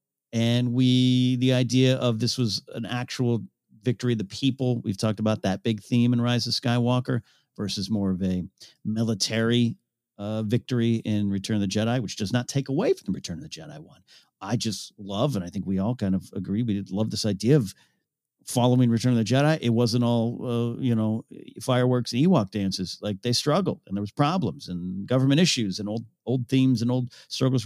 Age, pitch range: 40-59, 105-130 Hz